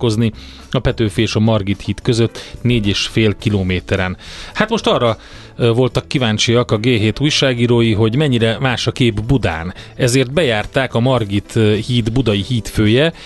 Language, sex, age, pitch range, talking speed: Hungarian, male, 30-49, 105-130 Hz, 140 wpm